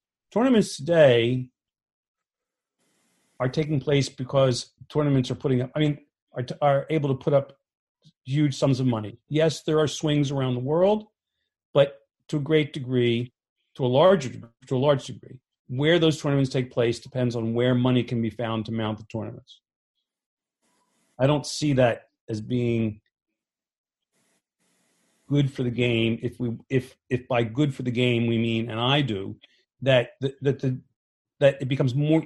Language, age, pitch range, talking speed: English, 40-59, 120-145 Hz, 165 wpm